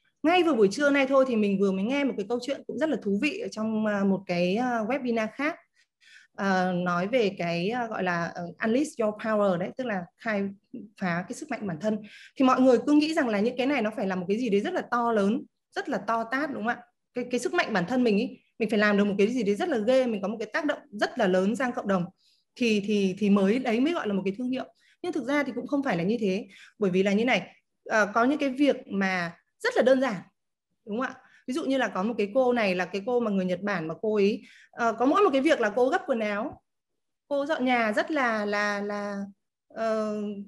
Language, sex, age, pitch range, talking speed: Vietnamese, female, 20-39, 205-260 Hz, 270 wpm